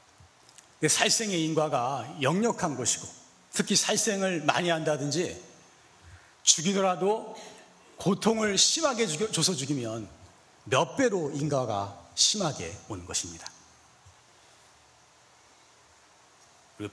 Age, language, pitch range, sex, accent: 40-59, Korean, 125-205 Hz, male, native